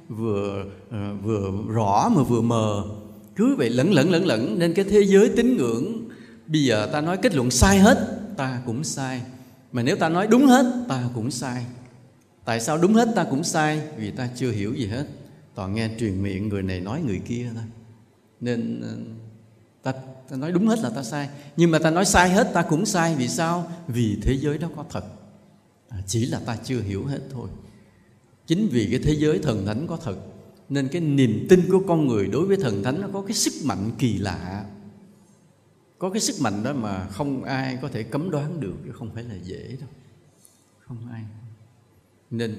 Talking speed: 205 wpm